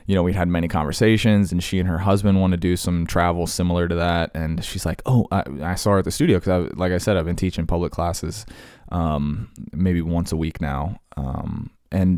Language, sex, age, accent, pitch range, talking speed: English, male, 20-39, American, 85-105 Hz, 235 wpm